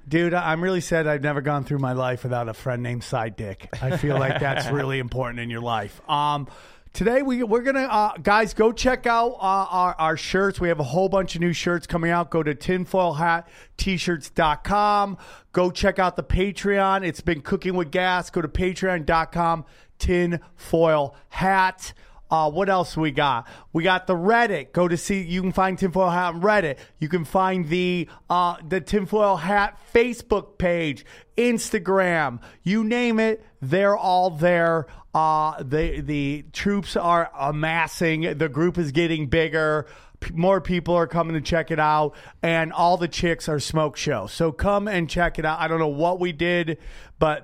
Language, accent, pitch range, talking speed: English, American, 150-185 Hz, 185 wpm